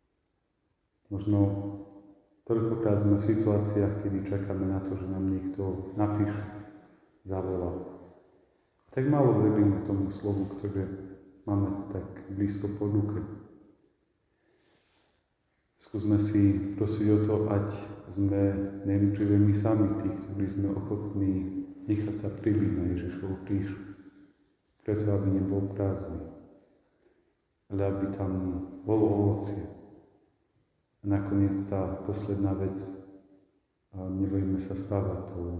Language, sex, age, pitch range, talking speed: Czech, male, 40-59, 95-105 Hz, 105 wpm